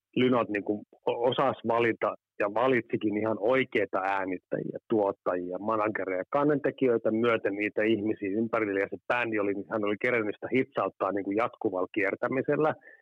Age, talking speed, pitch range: 30-49, 140 wpm, 100-125 Hz